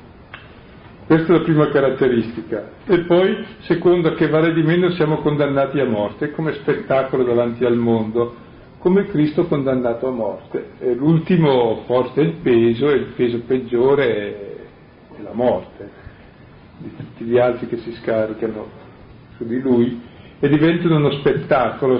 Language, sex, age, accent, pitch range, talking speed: Italian, male, 50-69, native, 120-155 Hz, 145 wpm